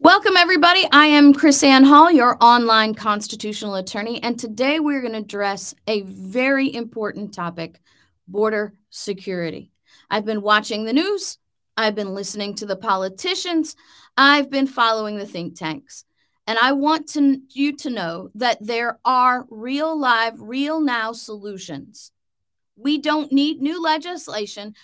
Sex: female